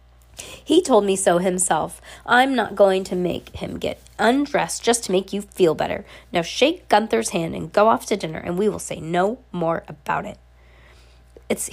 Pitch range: 175-245 Hz